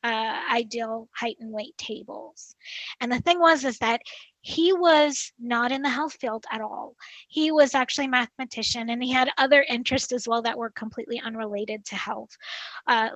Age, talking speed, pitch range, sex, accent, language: 20-39, 180 wpm, 230-280 Hz, female, American, English